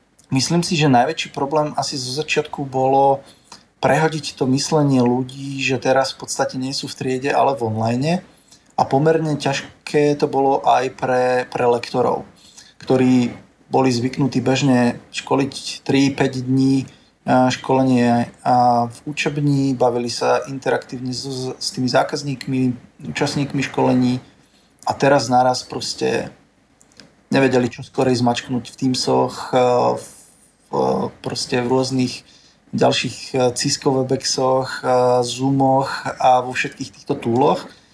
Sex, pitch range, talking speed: male, 125-140 Hz, 120 wpm